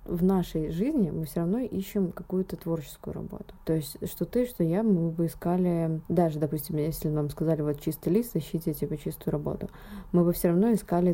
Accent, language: native, Russian